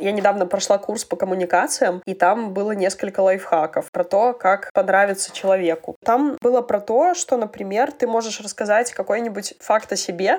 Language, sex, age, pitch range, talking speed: Russian, female, 20-39, 185-230 Hz, 170 wpm